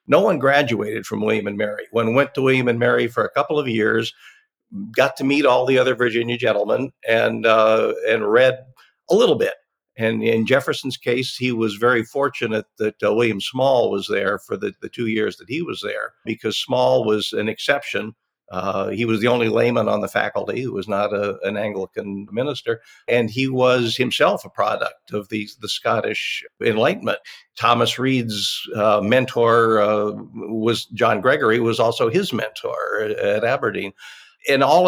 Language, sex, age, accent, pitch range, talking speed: English, male, 50-69, American, 110-140 Hz, 180 wpm